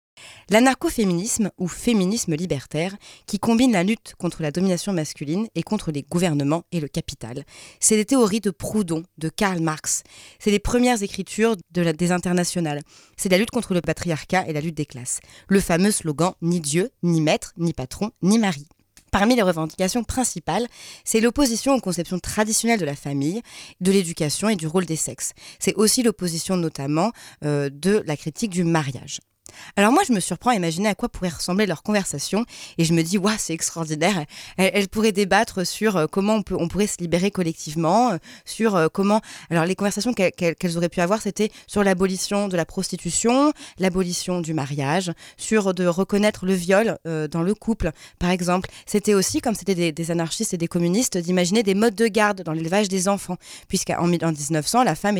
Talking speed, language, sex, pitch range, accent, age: 185 wpm, French, female, 165-210 Hz, French, 30-49